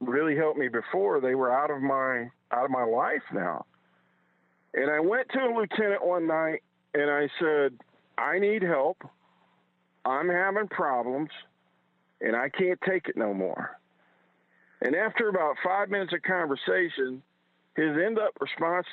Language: English